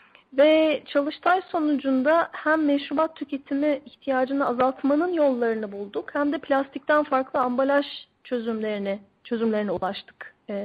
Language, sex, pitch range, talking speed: Turkish, female, 235-280 Hz, 100 wpm